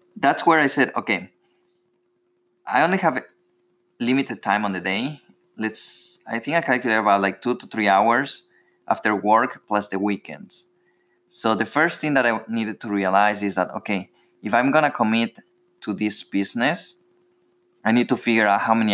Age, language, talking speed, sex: 20-39, English, 175 wpm, male